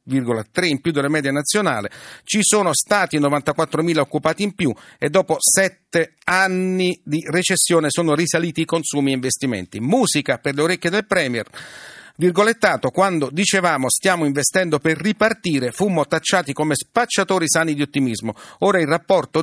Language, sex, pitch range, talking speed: Italian, male, 145-190 Hz, 150 wpm